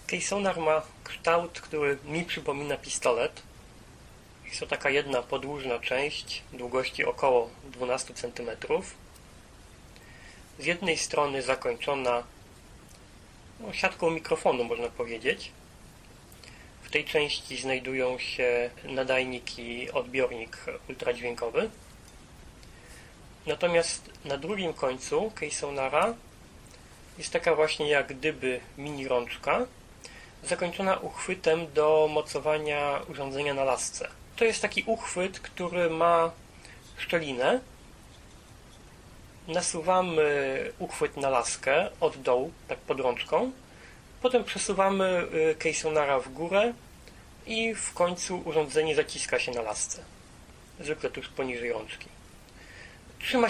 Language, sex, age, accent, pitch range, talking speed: Polish, male, 30-49, native, 130-180 Hz, 100 wpm